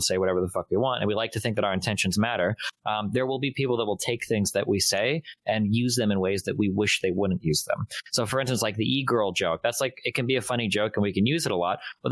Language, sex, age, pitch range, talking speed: English, male, 20-39, 95-115 Hz, 305 wpm